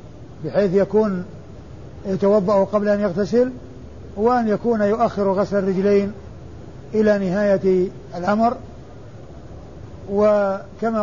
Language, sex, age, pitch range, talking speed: Arabic, male, 50-69, 185-210 Hz, 80 wpm